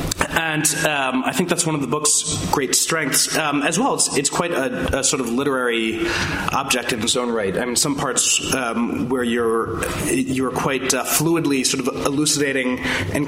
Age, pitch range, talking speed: 20-39, 120-140 Hz, 190 wpm